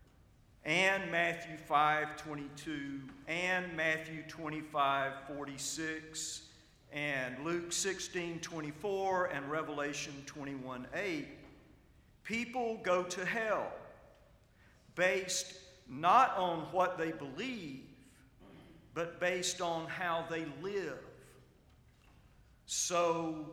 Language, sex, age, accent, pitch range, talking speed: English, male, 50-69, American, 145-185 Hz, 85 wpm